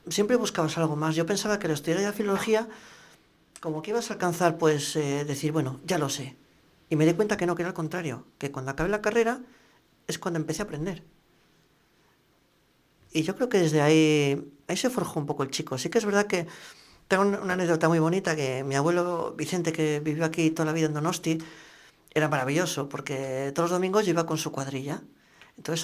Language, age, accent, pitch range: English, 40-59, Spanish, 150-185 Hz